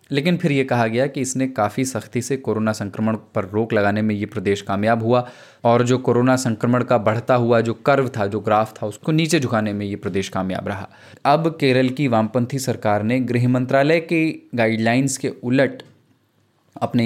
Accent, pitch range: native, 105-125 Hz